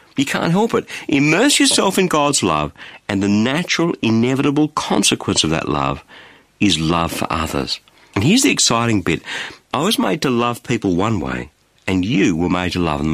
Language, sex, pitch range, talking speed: English, male, 95-150 Hz, 185 wpm